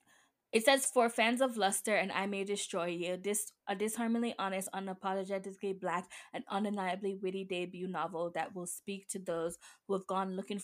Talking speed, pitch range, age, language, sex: 170 wpm, 185-210 Hz, 10-29, English, female